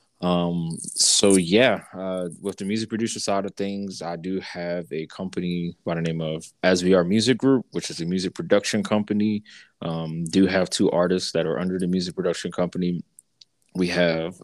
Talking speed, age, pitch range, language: 185 wpm, 20-39, 85-100 Hz, English